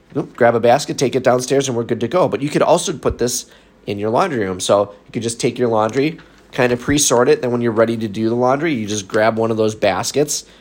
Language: English